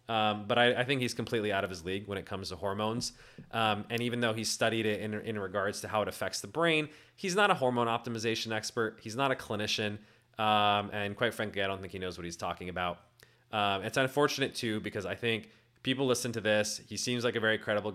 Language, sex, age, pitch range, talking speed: English, male, 30-49, 105-130 Hz, 240 wpm